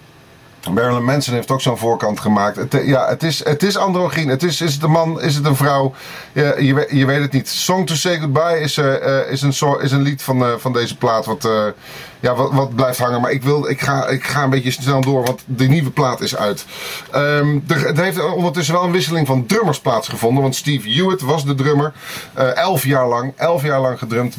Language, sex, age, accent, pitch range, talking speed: Dutch, male, 30-49, Dutch, 125-160 Hz, 235 wpm